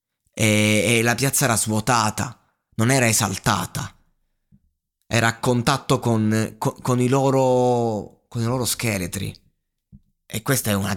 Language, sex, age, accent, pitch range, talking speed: Italian, male, 20-39, native, 100-125 Hz, 135 wpm